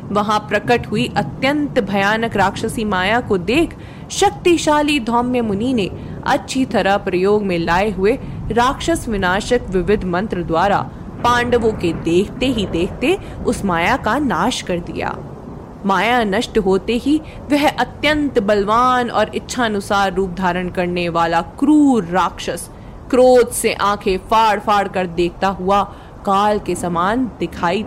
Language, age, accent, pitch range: Hindi, 20-39, native, 195-255 Hz